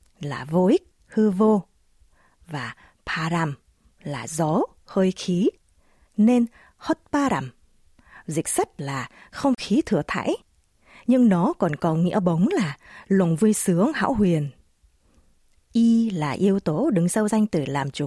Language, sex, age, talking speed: Vietnamese, female, 20-39, 145 wpm